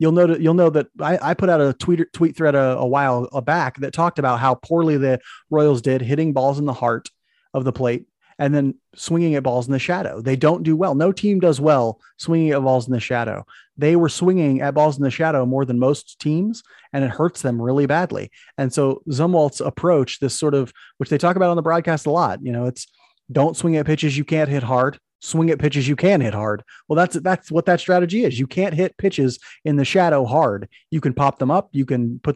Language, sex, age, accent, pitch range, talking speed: English, male, 30-49, American, 130-165 Hz, 240 wpm